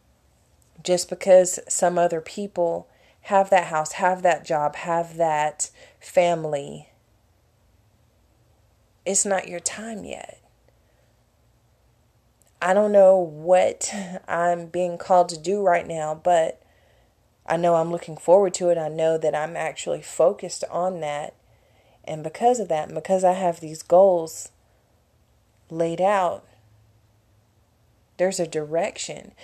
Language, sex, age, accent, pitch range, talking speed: English, female, 30-49, American, 150-180 Hz, 120 wpm